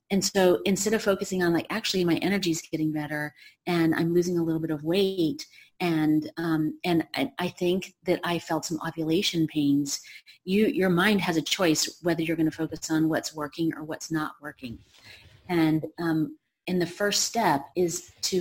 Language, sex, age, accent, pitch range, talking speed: English, female, 30-49, American, 155-180 Hz, 190 wpm